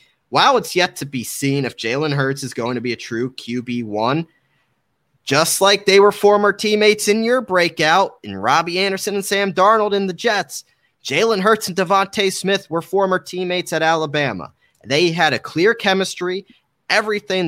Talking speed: 170 wpm